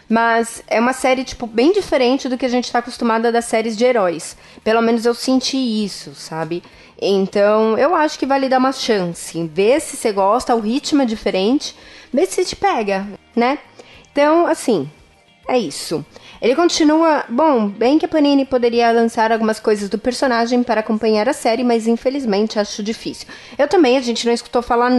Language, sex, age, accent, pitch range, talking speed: Portuguese, female, 20-39, Brazilian, 195-260 Hz, 180 wpm